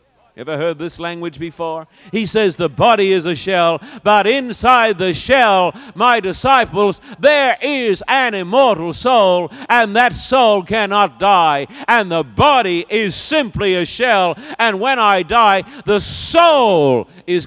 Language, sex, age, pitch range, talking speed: English, male, 60-79, 185-245 Hz, 145 wpm